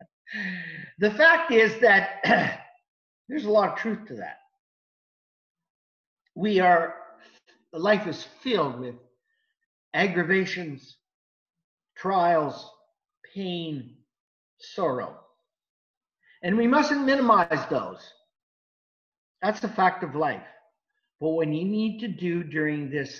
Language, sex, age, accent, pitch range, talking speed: English, male, 50-69, American, 160-265 Hz, 100 wpm